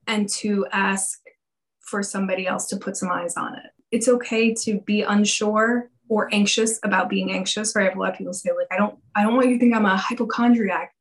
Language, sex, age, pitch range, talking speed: English, female, 20-39, 190-235 Hz, 230 wpm